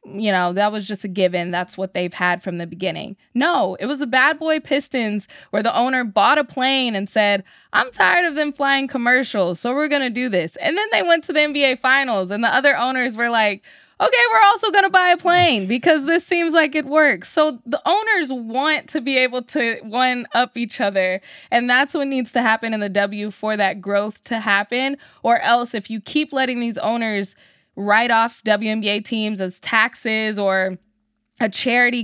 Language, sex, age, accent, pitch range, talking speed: English, female, 20-39, American, 205-260 Hz, 210 wpm